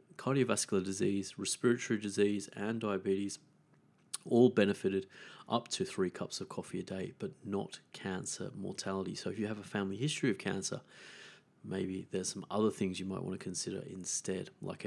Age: 30-49